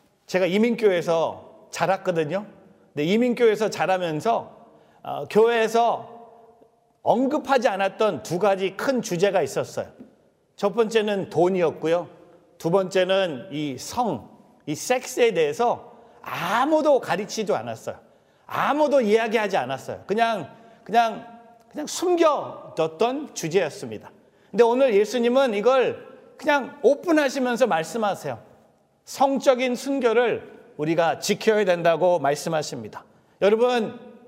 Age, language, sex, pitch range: 40-59, Korean, male, 185-245 Hz